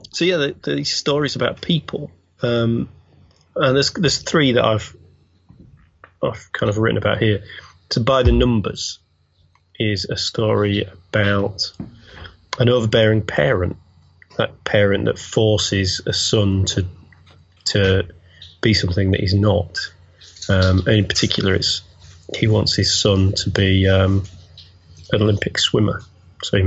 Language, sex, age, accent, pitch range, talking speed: English, male, 30-49, British, 90-110 Hz, 135 wpm